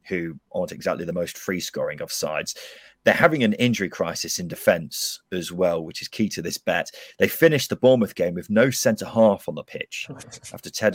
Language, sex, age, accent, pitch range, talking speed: English, male, 30-49, British, 90-125 Hz, 205 wpm